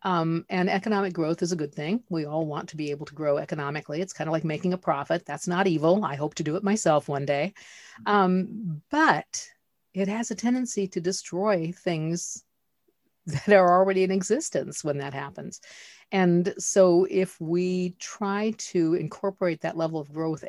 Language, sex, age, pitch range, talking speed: English, female, 50-69, 160-200 Hz, 185 wpm